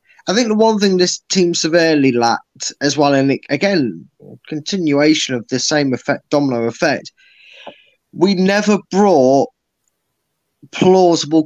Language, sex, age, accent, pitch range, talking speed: English, male, 20-39, British, 125-160 Hz, 125 wpm